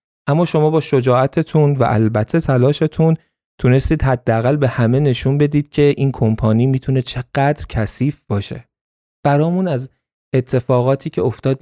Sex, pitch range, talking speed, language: male, 105-135 Hz, 130 wpm, Persian